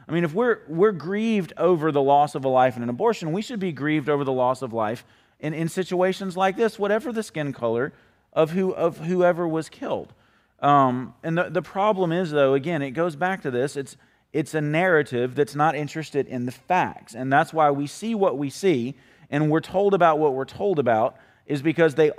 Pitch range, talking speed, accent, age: 135-175 Hz, 220 wpm, American, 30-49